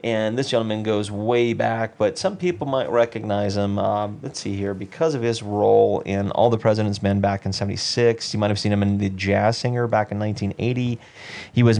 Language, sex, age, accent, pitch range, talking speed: English, male, 30-49, American, 100-115 Hz, 215 wpm